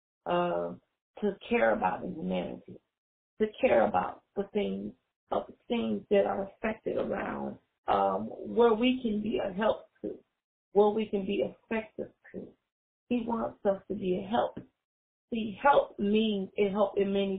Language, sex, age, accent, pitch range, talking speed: English, female, 30-49, American, 185-220 Hz, 160 wpm